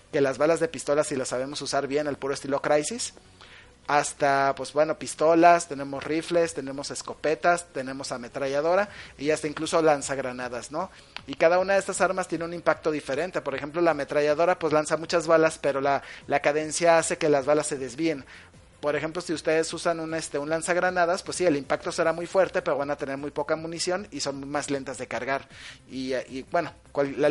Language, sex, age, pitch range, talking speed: Spanish, male, 30-49, 140-165 Hz, 195 wpm